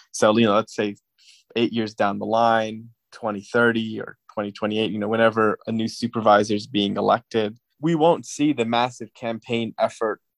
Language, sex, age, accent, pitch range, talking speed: English, male, 20-39, American, 110-120 Hz, 170 wpm